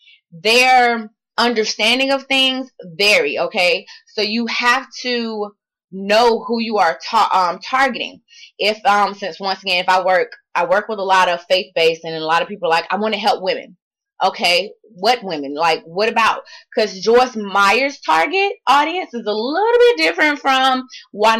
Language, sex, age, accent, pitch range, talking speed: English, female, 20-39, American, 190-255 Hz, 175 wpm